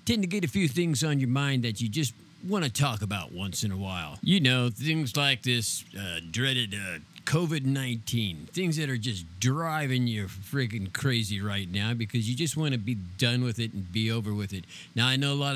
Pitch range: 115-150 Hz